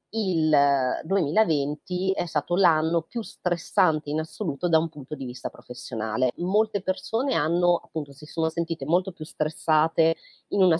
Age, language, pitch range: 30-49, Italian, 150-185 Hz